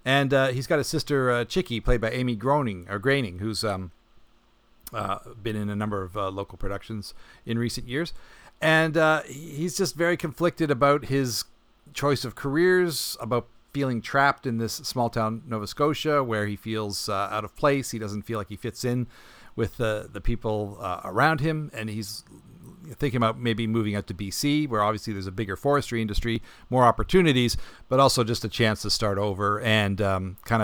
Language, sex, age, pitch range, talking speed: English, male, 50-69, 110-135 Hz, 195 wpm